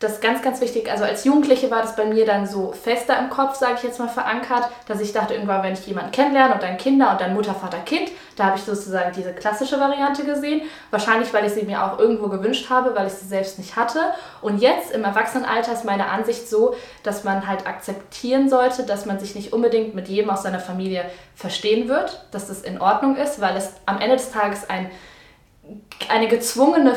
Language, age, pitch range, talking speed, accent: German, 20-39, 195-250 Hz, 225 wpm, German